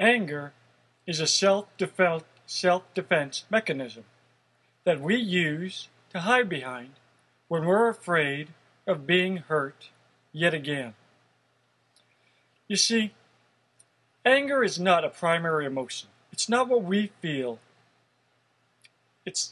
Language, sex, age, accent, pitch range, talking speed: English, male, 50-69, American, 145-205 Hz, 100 wpm